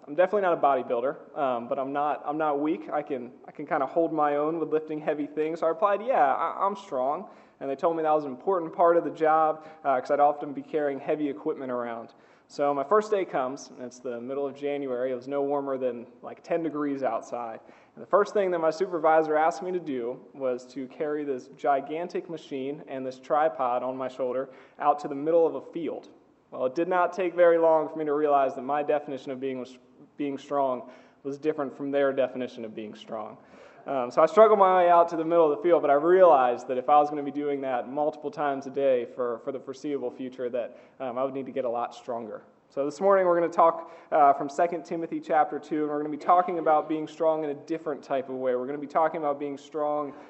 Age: 20-39